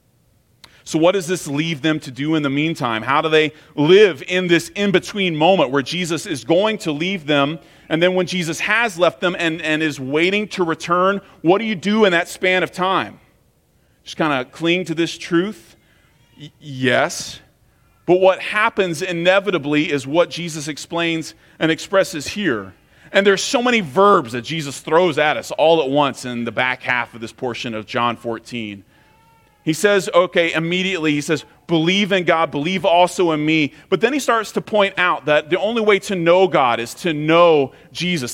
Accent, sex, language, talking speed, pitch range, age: American, male, English, 190 wpm, 135-185 Hz, 30-49